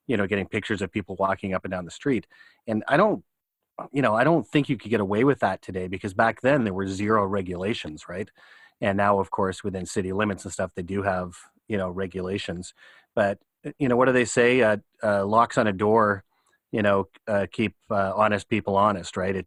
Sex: male